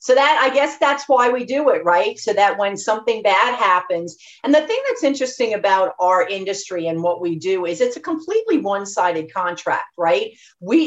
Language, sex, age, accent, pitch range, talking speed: English, female, 50-69, American, 185-280 Hz, 200 wpm